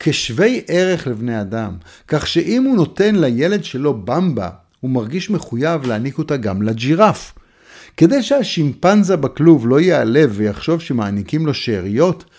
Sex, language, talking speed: male, Hebrew, 130 wpm